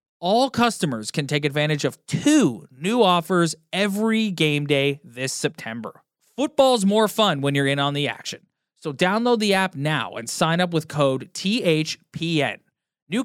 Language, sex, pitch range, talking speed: English, male, 135-185 Hz, 160 wpm